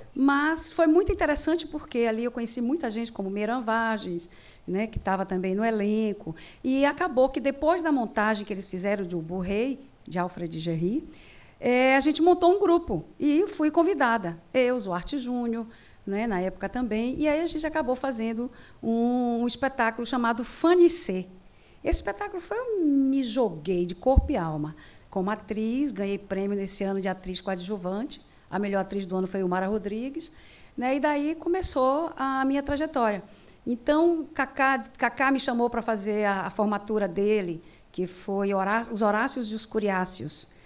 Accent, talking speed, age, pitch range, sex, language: Brazilian, 170 wpm, 50-69, 200-285 Hz, female, Portuguese